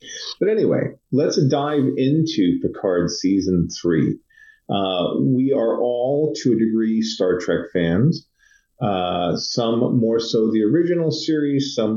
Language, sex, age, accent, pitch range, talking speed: English, male, 30-49, American, 100-145 Hz, 130 wpm